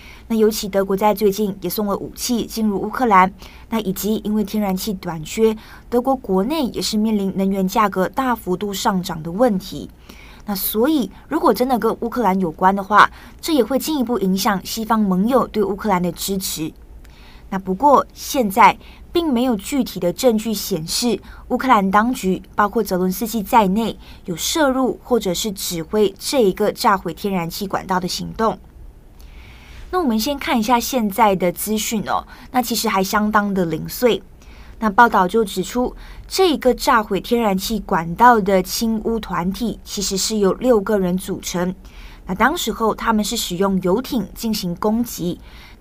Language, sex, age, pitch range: Chinese, female, 20-39, 185-230 Hz